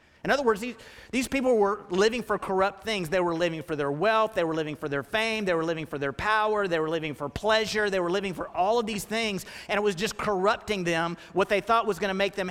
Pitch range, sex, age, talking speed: 170-225 Hz, male, 30-49, 270 wpm